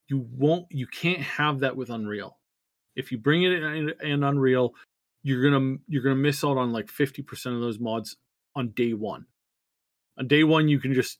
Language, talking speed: English, 195 wpm